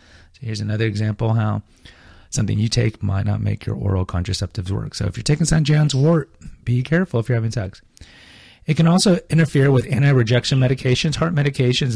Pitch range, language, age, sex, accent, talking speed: 105-140 Hz, English, 30-49, male, American, 185 wpm